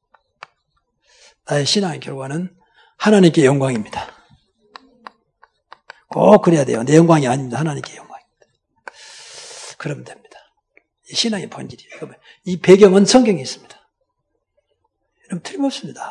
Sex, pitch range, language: male, 160-255 Hz, Korean